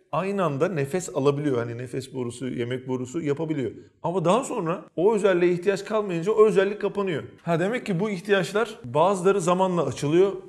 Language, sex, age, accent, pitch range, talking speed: Turkish, male, 40-59, native, 135-175 Hz, 160 wpm